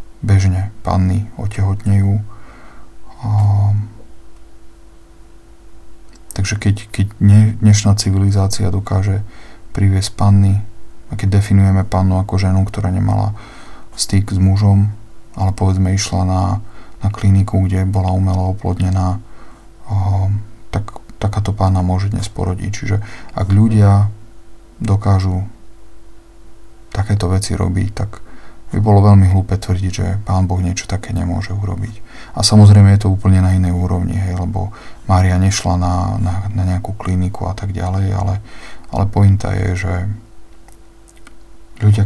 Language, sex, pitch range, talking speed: Slovak, male, 95-105 Hz, 120 wpm